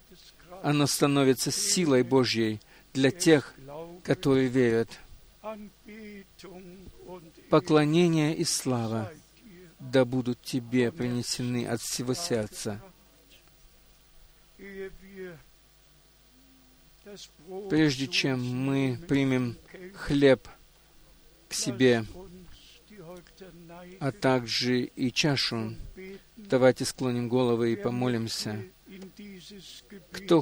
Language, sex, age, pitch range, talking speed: Russian, male, 50-69, 130-180 Hz, 70 wpm